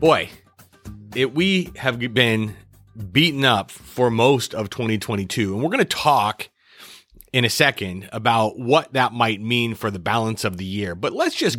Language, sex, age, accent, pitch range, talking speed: English, male, 30-49, American, 100-130 Hz, 165 wpm